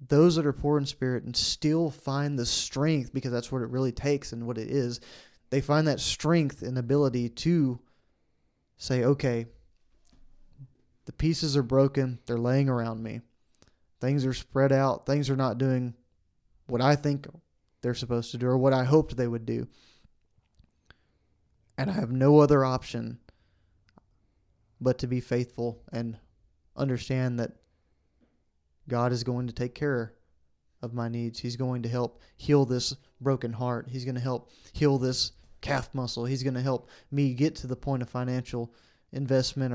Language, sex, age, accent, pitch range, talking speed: English, male, 20-39, American, 120-140 Hz, 165 wpm